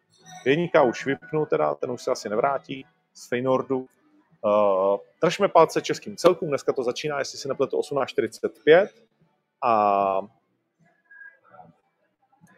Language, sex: Czech, male